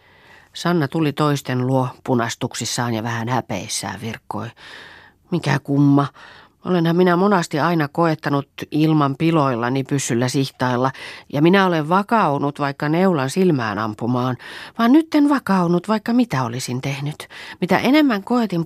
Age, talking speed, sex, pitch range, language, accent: 40-59, 125 wpm, female, 125-175 Hz, Finnish, native